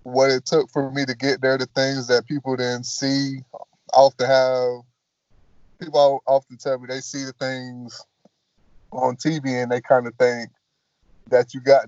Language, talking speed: English, 170 wpm